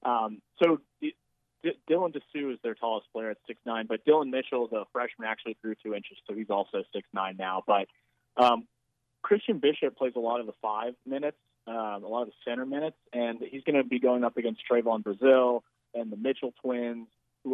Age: 30-49